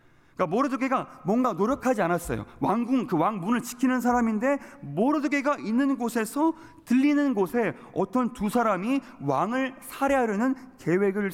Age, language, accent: 30-49, Korean, native